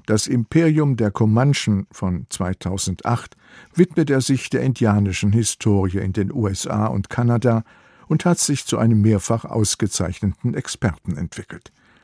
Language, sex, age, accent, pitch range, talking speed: German, male, 50-69, German, 105-130 Hz, 130 wpm